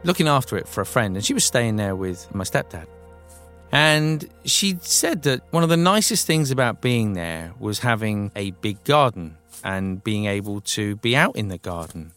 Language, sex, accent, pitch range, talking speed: English, male, British, 105-145 Hz, 195 wpm